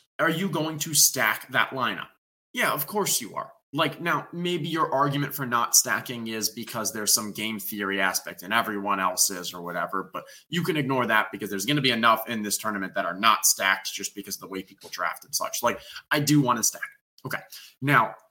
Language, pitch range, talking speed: English, 105-140 Hz, 215 wpm